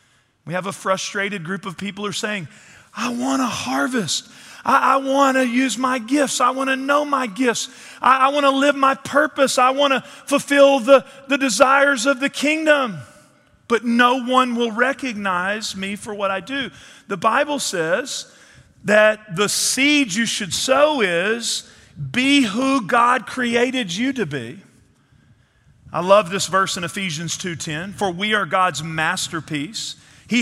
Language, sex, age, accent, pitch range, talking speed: English, male, 40-59, American, 190-270 Hz, 165 wpm